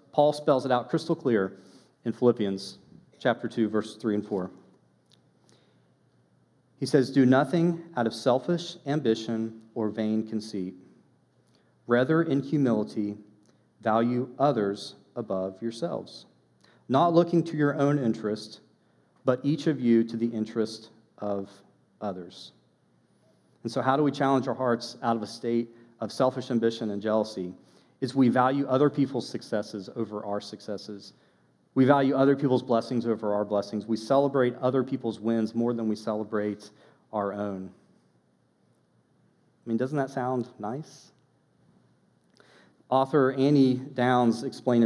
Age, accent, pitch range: 40-59, American, 105-130 Hz